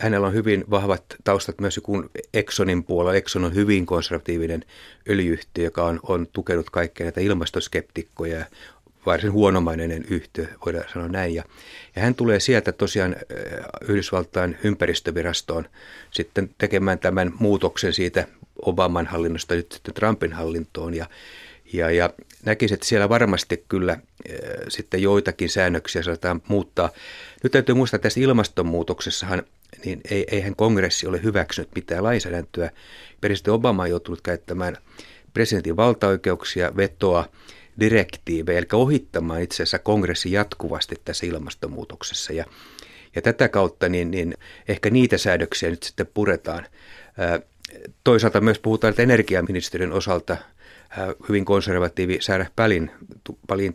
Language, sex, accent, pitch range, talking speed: Finnish, male, native, 85-105 Hz, 125 wpm